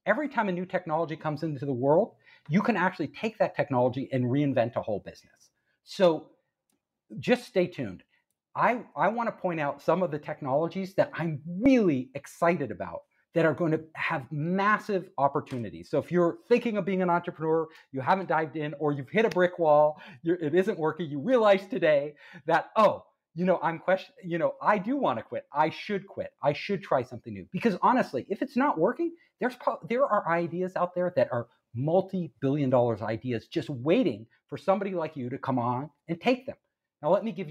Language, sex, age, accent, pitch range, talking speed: English, male, 50-69, American, 140-185 Hz, 195 wpm